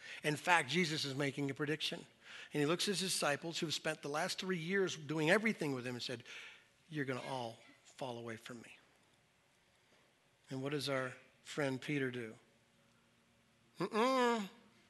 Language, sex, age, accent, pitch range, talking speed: English, male, 50-69, American, 145-220 Hz, 170 wpm